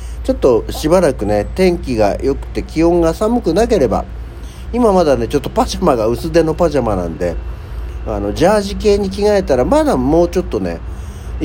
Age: 50-69